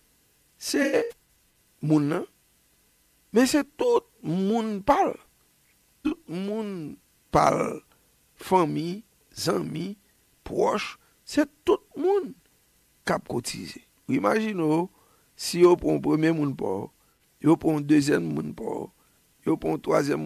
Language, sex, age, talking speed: English, male, 50-69, 100 wpm